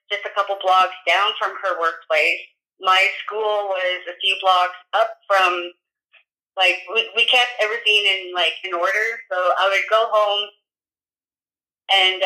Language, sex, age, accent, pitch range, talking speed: English, female, 20-39, American, 185-215 Hz, 150 wpm